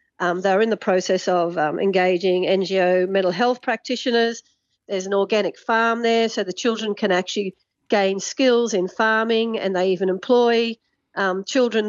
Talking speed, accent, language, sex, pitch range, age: 160 wpm, Australian, English, female, 195-235 Hz, 50-69